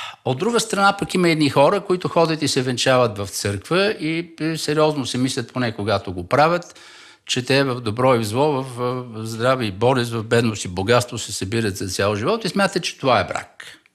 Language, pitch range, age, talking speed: Bulgarian, 115-180 Hz, 60-79, 205 wpm